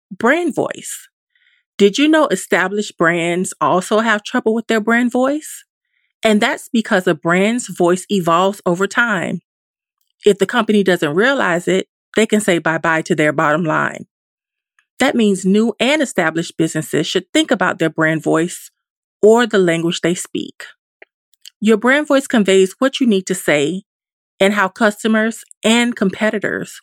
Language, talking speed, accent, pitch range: English, 155 wpm, American, 175-230 Hz